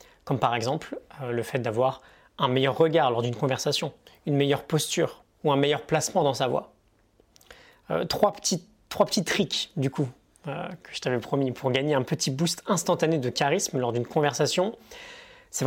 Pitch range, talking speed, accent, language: 135-175 Hz, 180 wpm, French, French